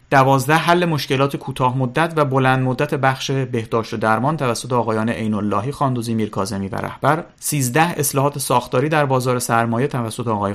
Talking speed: 155 wpm